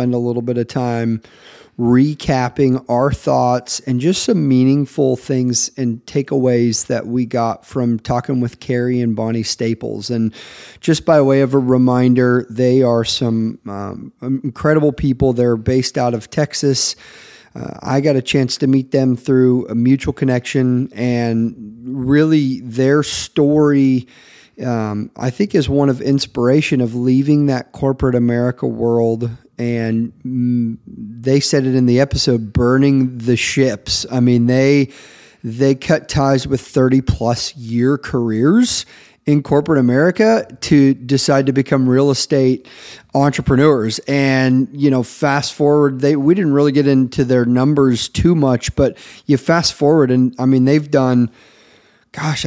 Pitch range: 120-140 Hz